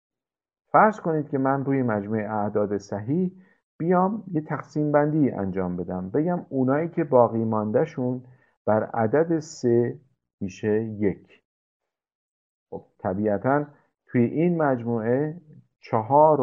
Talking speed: 110 wpm